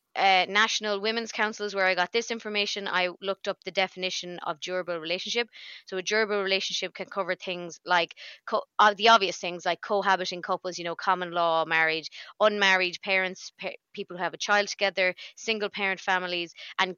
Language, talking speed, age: English, 180 wpm, 20-39